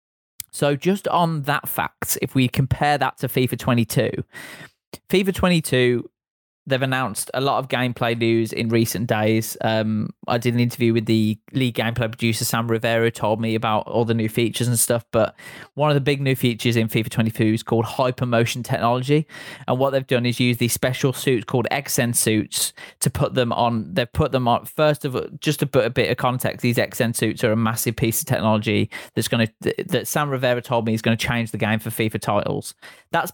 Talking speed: 210 wpm